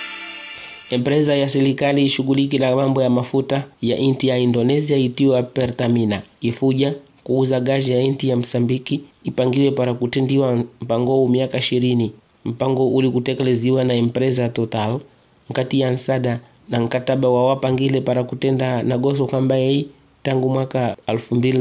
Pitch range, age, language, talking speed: 120-135 Hz, 30-49, English, 135 wpm